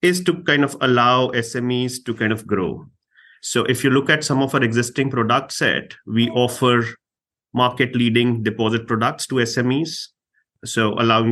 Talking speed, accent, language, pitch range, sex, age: 160 wpm, Indian, English, 105-120 Hz, male, 30-49